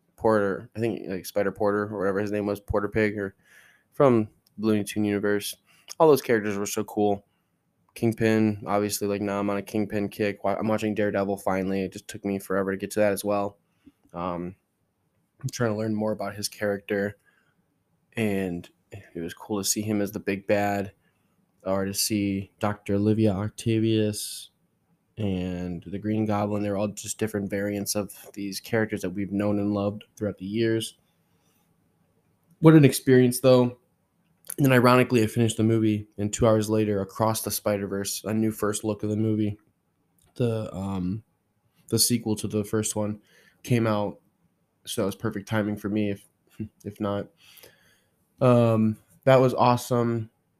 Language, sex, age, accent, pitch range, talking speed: English, male, 10-29, American, 100-110 Hz, 165 wpm